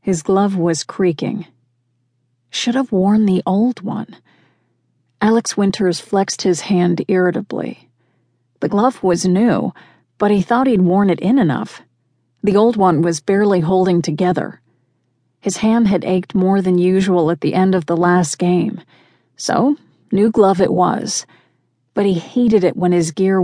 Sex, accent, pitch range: female, American, 160-200 Hz